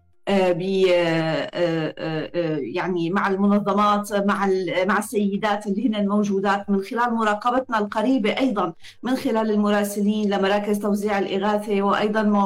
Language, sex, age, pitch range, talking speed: Arabic, female, 30-49, 200-235 Hz, 110 wpm